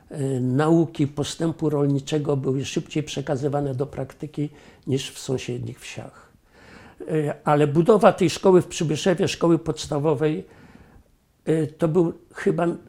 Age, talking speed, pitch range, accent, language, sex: 60-79, 105 wpm, 135-165 Hz, native, Polish, male